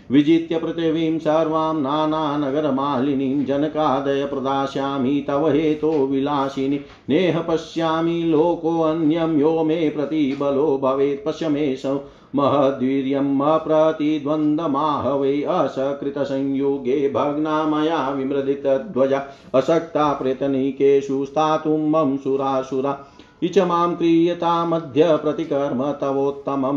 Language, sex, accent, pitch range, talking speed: Hindi, male, native, 135-155 Hz, 75 wpm